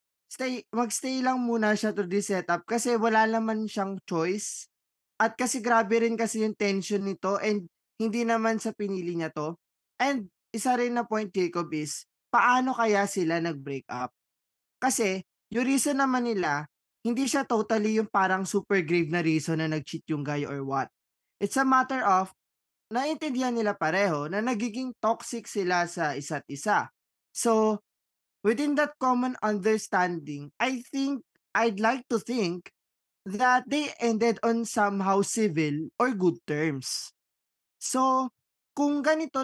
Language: Filipino